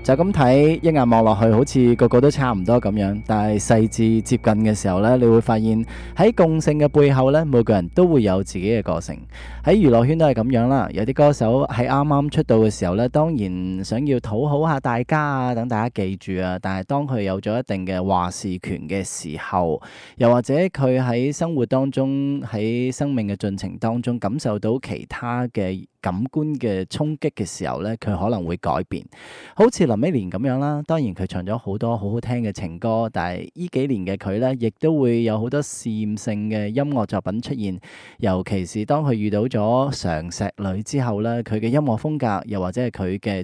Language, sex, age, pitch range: Chinese, male, 20-39, 100-135 Hz